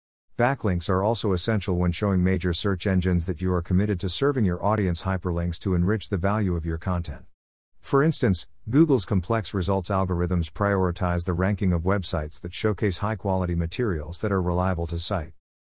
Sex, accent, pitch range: male, American, 85-110 Hz